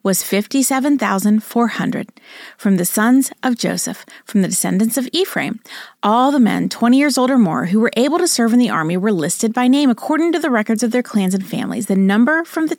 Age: 30-49